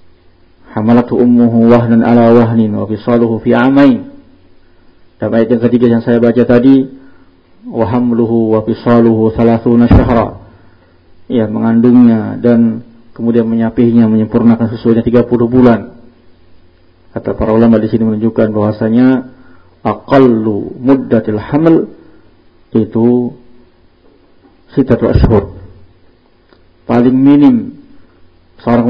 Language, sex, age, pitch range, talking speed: Indonesian, male, 50-69, 100-125 Hz, 100 wpm